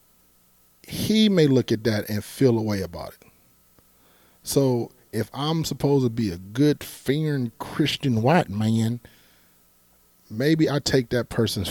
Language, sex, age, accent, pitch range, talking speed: English, male, 40-59, American, 95-120 Hz, 145 wpm